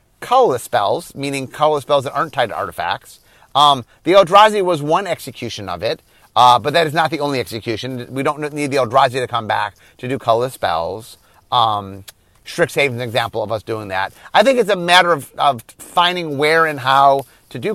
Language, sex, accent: English, male, American